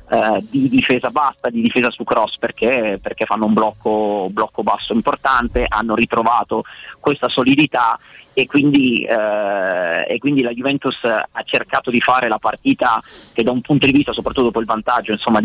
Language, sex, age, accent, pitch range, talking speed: Italian, male, 30-49, native, 110-135 Hz, 170 wpm